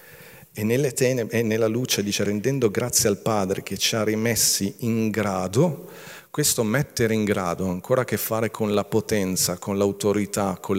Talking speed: 180 wpm